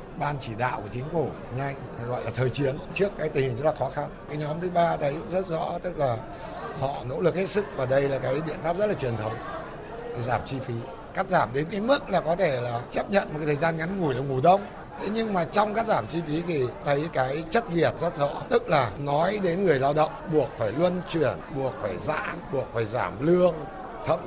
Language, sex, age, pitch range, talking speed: Vietnamese, male, 60-79, 140-190 Hz, 250 wpm